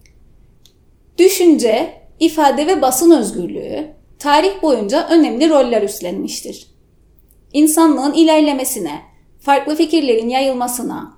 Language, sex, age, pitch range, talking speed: Turkish, female, 30-49, 240-320 Hz, 80 wpm